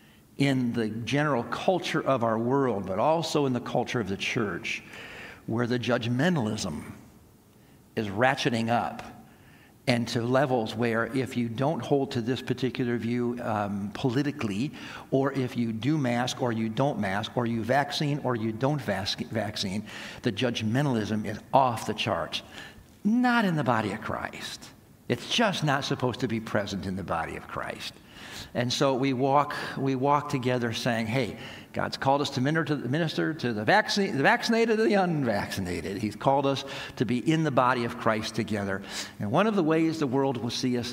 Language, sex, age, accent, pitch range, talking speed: English, male, 60-79, American, 115-145 Hz, 175 wpm